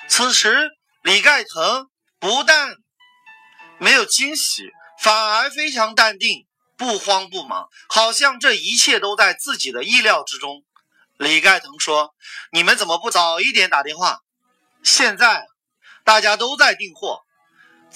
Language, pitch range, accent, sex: Chinese, 210-310 Hz, native, male